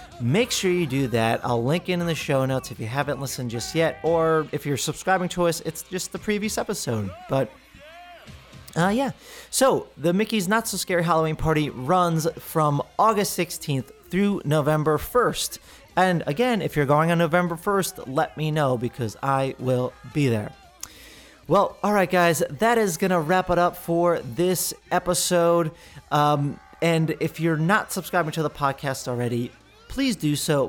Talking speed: 170 wpm